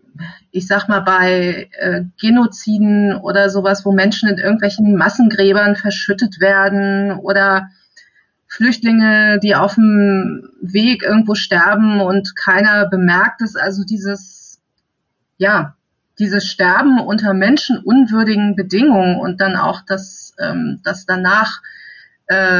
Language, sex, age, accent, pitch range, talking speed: German, female, 30-49, German, 190-215 Hz, 105 wpm